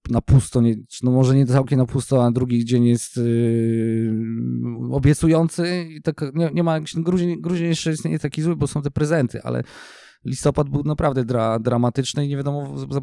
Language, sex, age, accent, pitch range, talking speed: Polish, male, 20-39, native, 115-145 Hz, 200 wpm